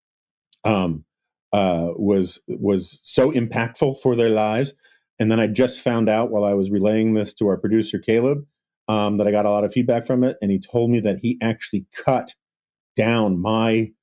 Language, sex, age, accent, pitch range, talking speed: English, male, 40-59, American, 100-130 Hz, 190 wpm